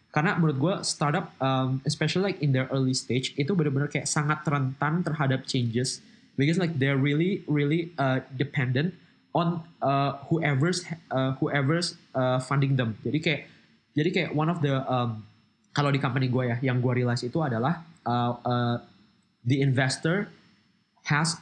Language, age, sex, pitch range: Indonesian, 20-39, male, 125-150 Hz